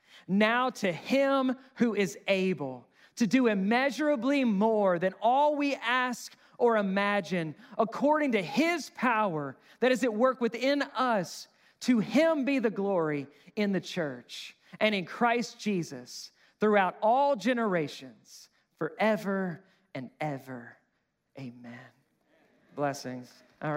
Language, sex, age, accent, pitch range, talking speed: English, male, 40-59, American, 165-235 Hz, 120 wpm